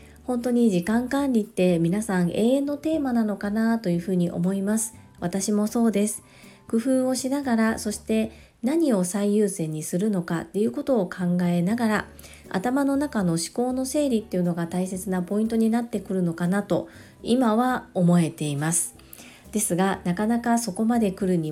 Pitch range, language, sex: 180-235 Hz, Japanese, female